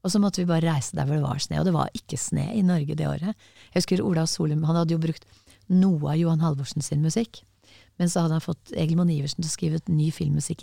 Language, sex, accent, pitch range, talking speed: English, female, Swedish, 150-185 Hz, 255 wpm